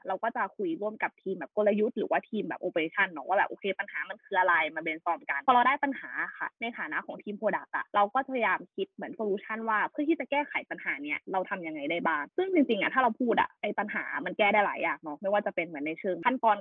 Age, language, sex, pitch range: 20-39, Thai, female, 190-250 Hz